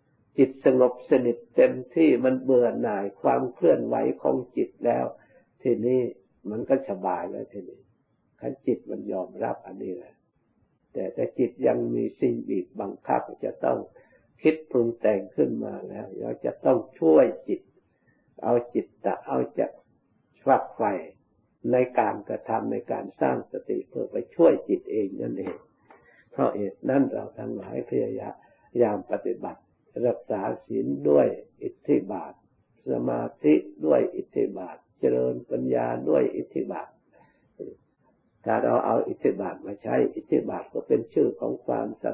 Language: Thai